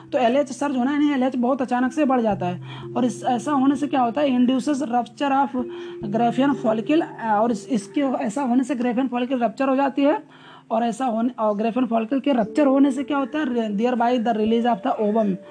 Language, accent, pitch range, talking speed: Hindi, native, 230-280 Hz, 225 wpm